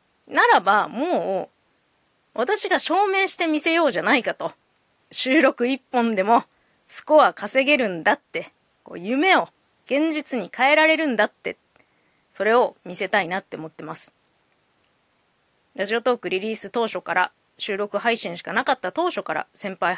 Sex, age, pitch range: female, 20-39, 200-270 Hz